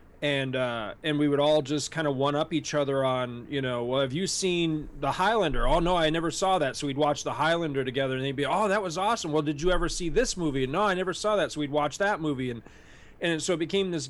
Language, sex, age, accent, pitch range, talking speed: English, male, 40-59, American, 140-175 Hz, 275 wpm